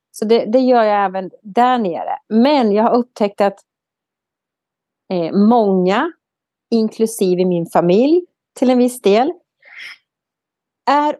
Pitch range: 220-285 Hz